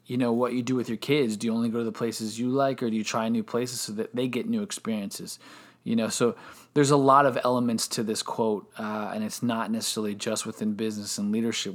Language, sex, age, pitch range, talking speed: English, male, 20-39, 110-130 Hz, 255 wpm